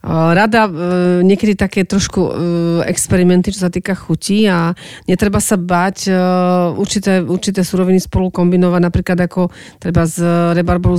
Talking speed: 125 wpm